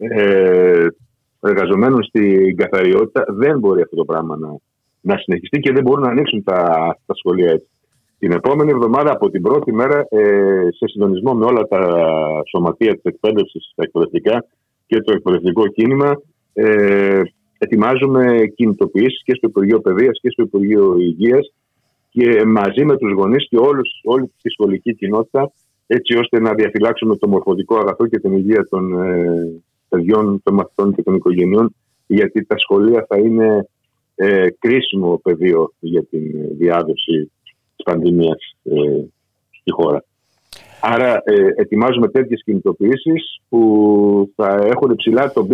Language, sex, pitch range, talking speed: Greek, male, 90-120 Hz, 140 wpm